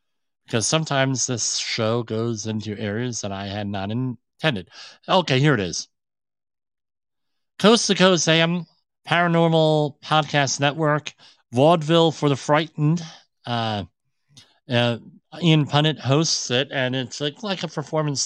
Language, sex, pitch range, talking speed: English, male, 105-145 Hz, 130 wpm